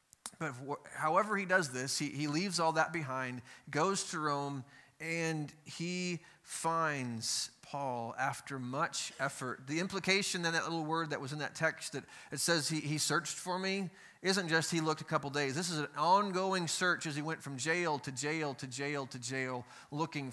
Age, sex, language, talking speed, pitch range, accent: 30-49, male, English, 190 wpm, 135-170 Hz, American